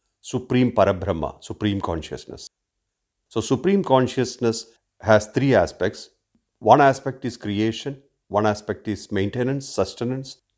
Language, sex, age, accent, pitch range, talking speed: English, male, 50-69, Indian, 100-125 Hz, 110 wpm